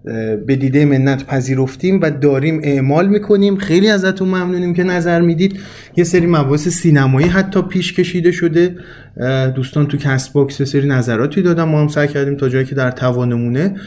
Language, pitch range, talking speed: Persian, 135-185 Hz, 160 wpm